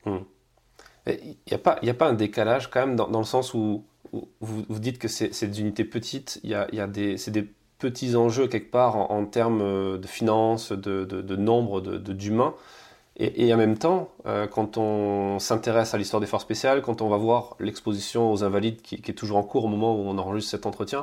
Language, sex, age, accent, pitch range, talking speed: French, male, 20-39, French, 105-125 Hz, 210 wpm